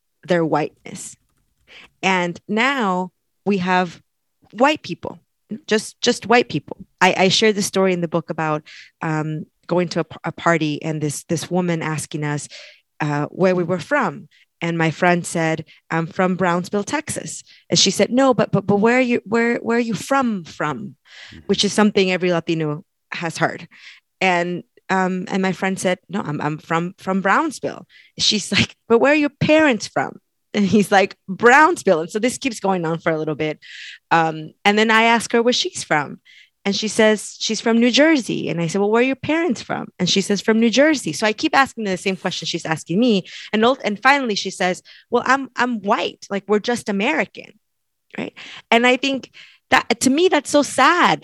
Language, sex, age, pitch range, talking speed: English, female, 20-39, 170-230 Hz, 195 wpm